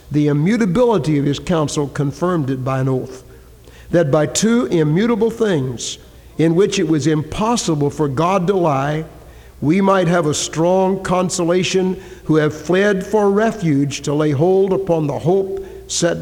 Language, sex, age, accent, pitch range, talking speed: English, male, 60-79, American, 140-185 Hz, 155 wpm